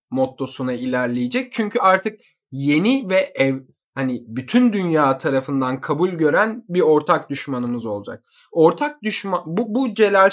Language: Turkish